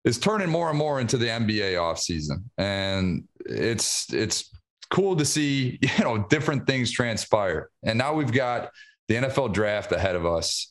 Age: 30-49